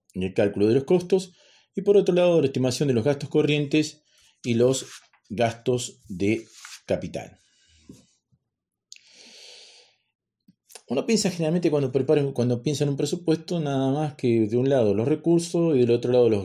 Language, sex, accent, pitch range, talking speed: Spanish, male, Argentinian, 95-140 Hz, 160 wpm